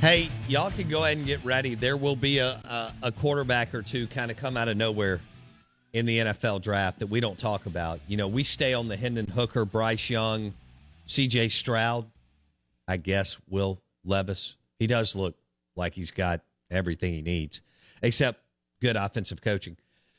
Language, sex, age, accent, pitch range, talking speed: English, male, 50-69, American, 90-130 Hz, 180 wpm